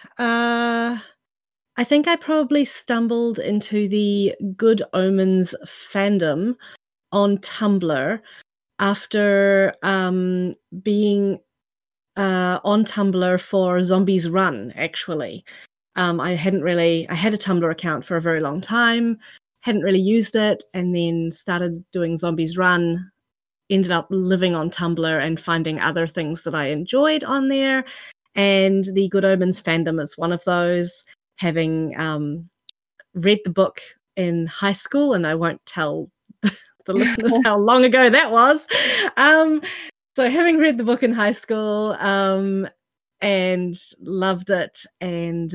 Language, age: English, 30-49